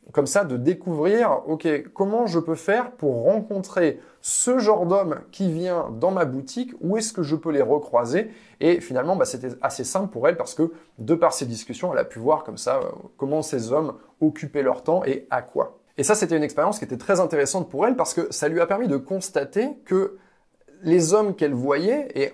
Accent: French